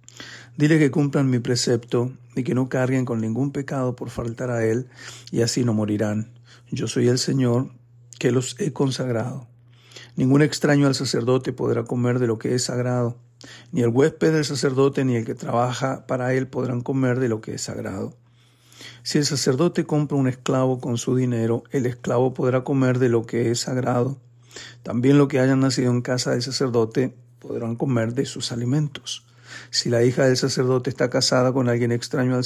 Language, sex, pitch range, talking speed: Spanish, male, 120-135 Hz, 185 wpm